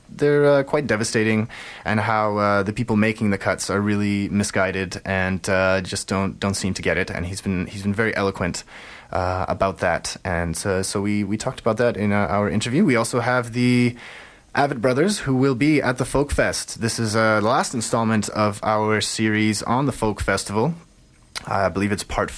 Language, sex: English, male